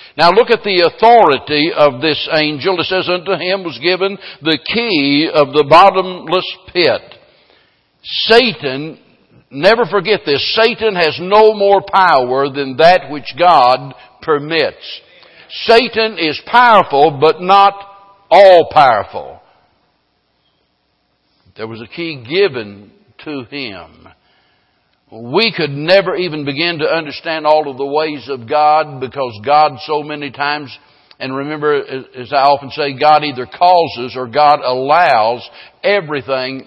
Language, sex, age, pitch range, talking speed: English, male, 60-79, 140-180 Hz, 130 wpm